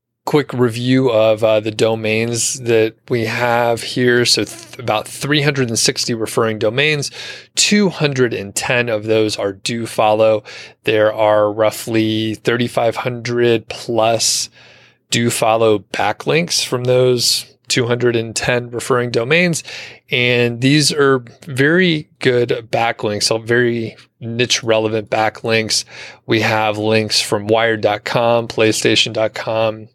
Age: 30-49